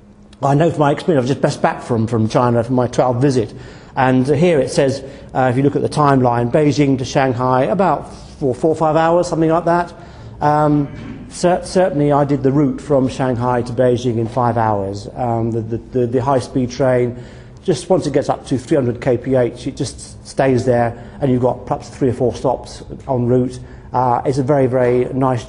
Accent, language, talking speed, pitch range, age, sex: British, English, 205 wpm, 120-145 Hz, 40-59, male